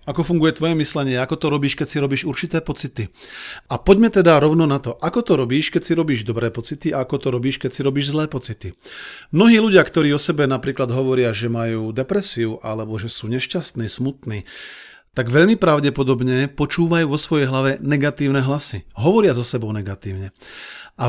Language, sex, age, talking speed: Slovak, male, 40-59, 180 wpm